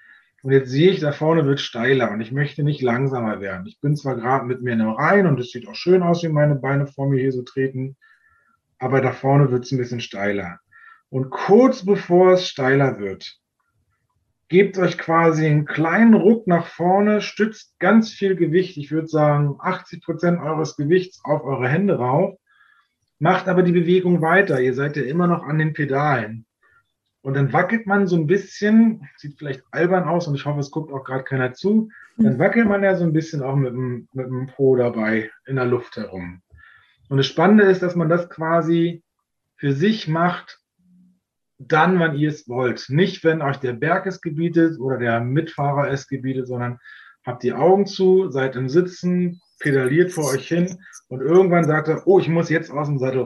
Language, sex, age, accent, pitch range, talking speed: German, male, 30-49, German, 130-180 Hz, 195 wpm